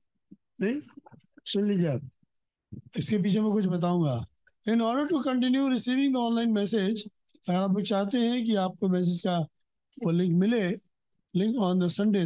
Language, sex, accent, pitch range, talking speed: Hindi, male, native, 175-245 Hz, 140 wpm